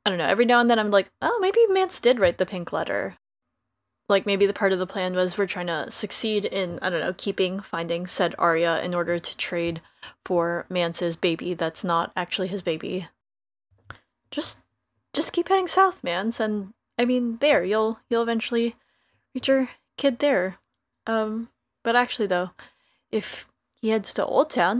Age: 20-39